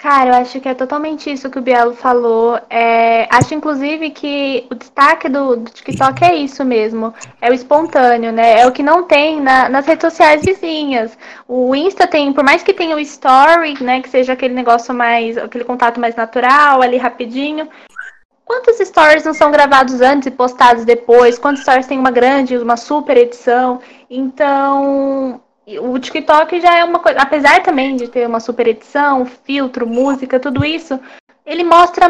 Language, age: Portuguese, 10-29